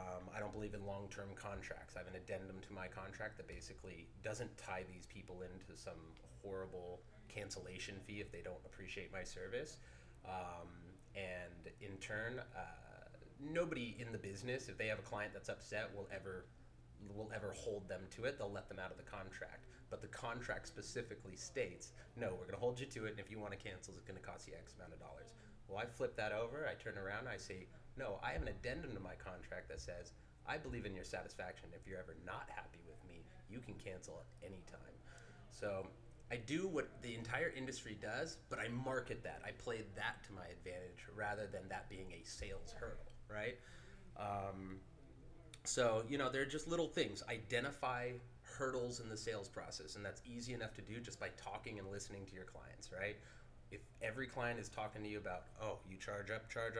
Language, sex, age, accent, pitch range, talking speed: English, male, 30-49, American, 95-120 Hz, 205 wpm